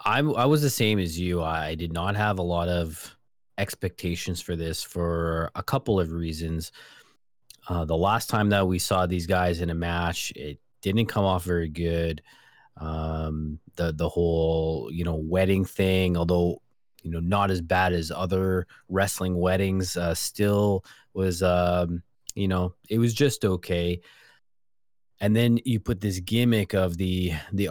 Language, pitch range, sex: English, 85-100 Hz, male